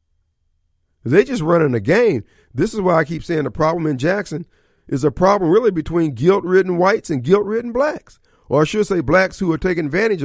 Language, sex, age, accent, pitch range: Japanese, male, 50-69, American, 115-165 Hz